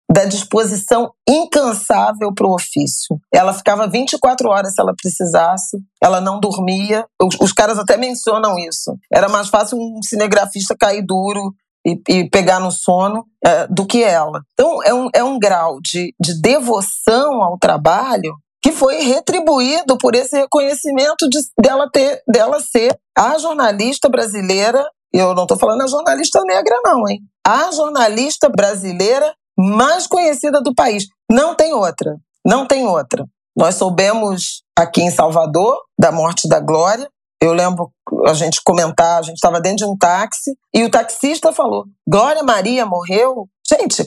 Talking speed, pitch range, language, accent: 155 wpm, 190-275 Hz, Portuguese, Brazilian